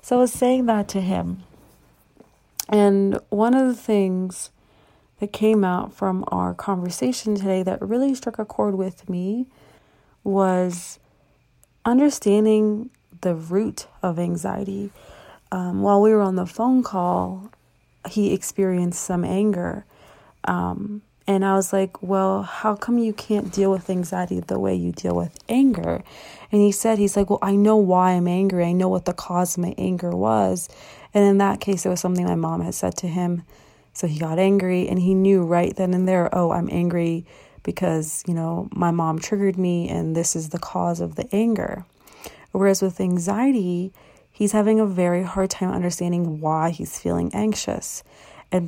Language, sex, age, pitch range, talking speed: English, female, 30-49, 175-205 Hz, 175 wpm